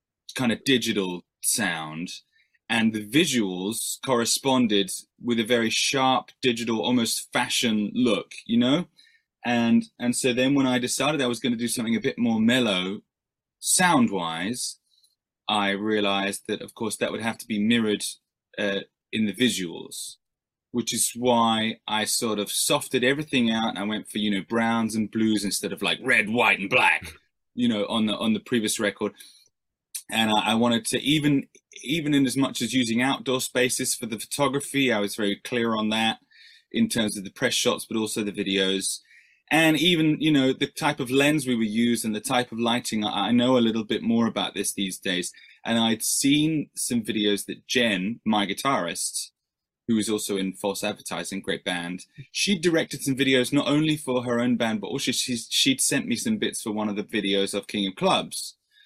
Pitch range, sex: 105-135 Hz, male